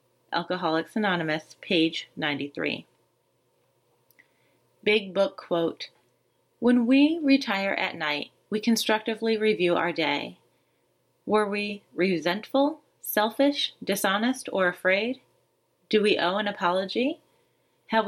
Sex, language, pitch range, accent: female, English, 175-230 Hz, American